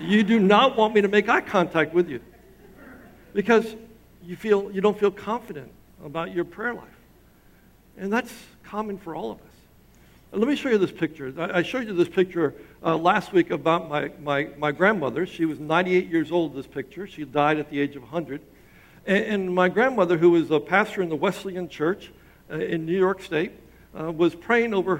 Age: 60-79